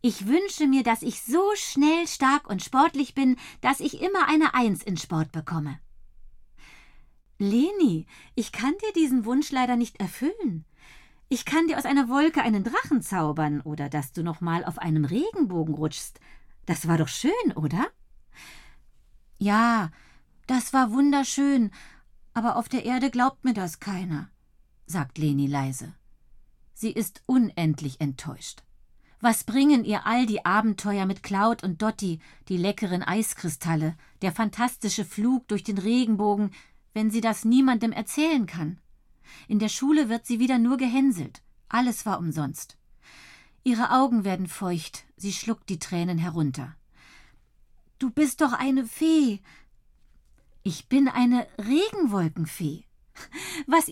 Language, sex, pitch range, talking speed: German, female, 175-270 Hz, 140 wpm